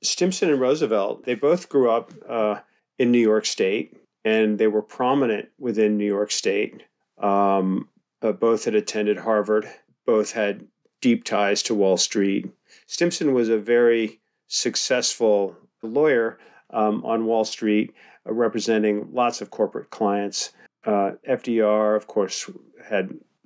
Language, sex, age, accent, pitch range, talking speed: English, male, 40-59, American, 105-125 Hz, 140 wpm